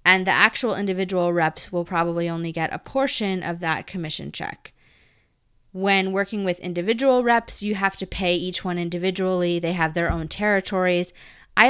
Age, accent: 20-39, American